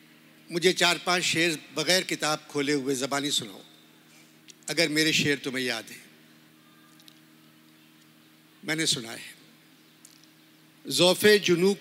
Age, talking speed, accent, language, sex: 60-79, 100 wpm, native, Hindi, male